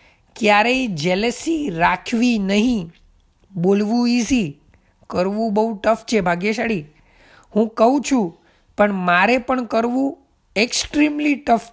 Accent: native